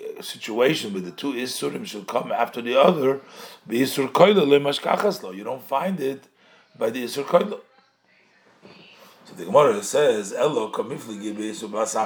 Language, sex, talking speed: English, male, 105 wpm